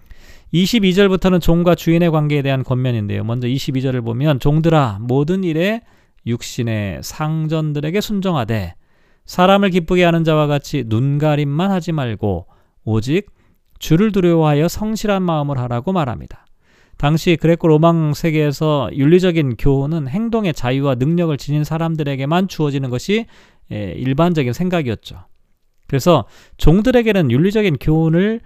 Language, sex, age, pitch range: Korean, male, 40-59, 135-180 Hz